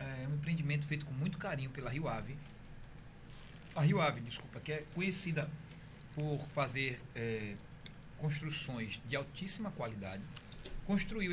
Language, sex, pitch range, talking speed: Portuguese, male, 120-155 Hz, 120 wpm